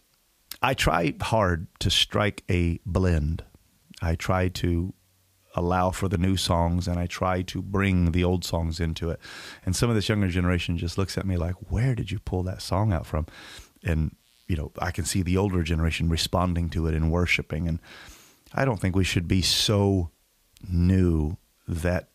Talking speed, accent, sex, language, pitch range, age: 185 wpm, American, male, English, 85-100 Hz, 30-49